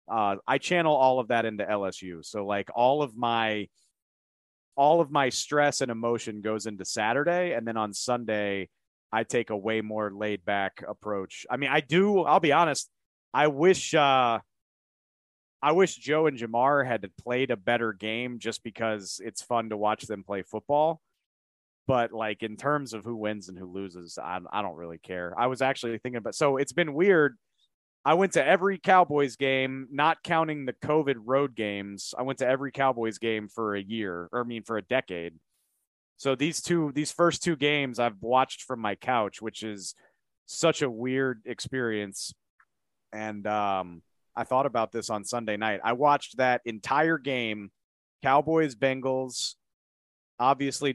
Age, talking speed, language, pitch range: 30-49, 175 wpm, English, 105-135 Hz